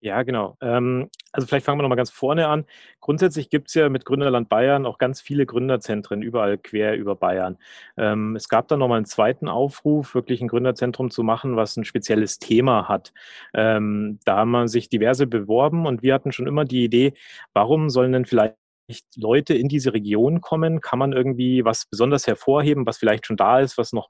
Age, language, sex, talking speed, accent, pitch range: 30-49, German, male, 190 wpm, German, 115-145 Hz